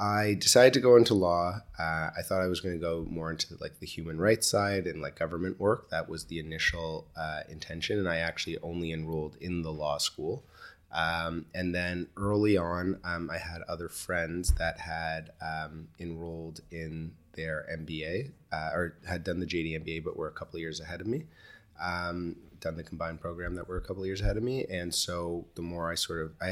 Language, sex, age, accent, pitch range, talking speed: English, male, 30-49, American, 80-90 Hz, 215 wpm